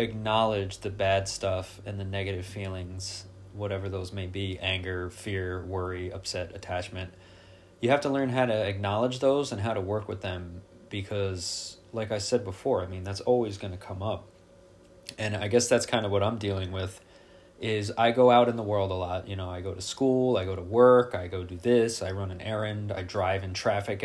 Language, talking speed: English, 210 wpm